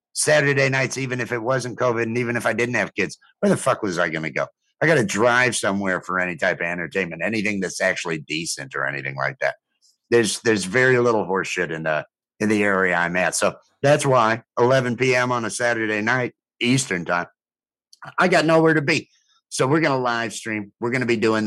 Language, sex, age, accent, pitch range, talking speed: English, male, 50-69, American, 110-135 Hz, 210 wpm